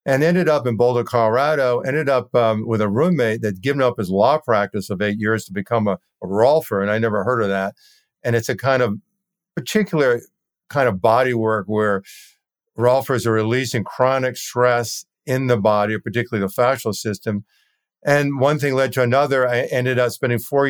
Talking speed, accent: 190 wpm, American